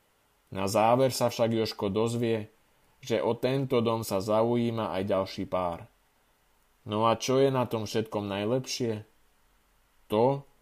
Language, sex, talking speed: Slovak, male, 135 wpm